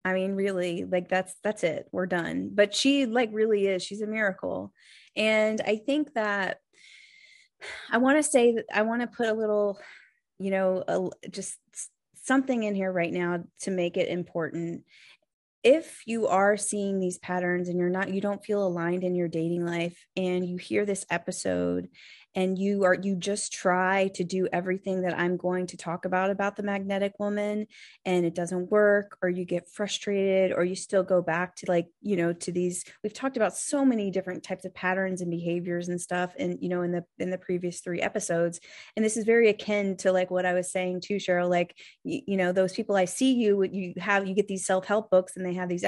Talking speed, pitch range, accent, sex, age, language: 210 wpm, 180-205 Hz, American, female, 20-39, English